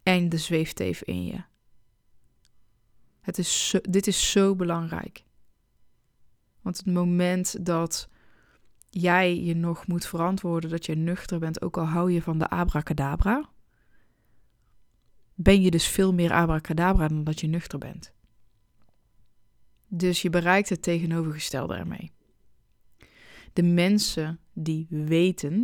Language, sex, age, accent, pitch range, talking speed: Dutch, female, 20-39, Dutch, 160-180 Hz, 125 wpm